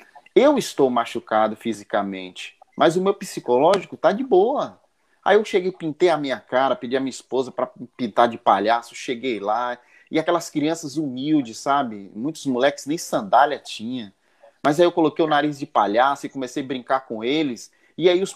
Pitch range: 120-175 Hz